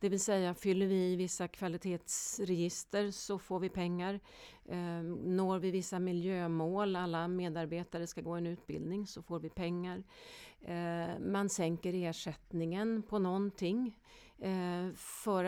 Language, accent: Swedish, native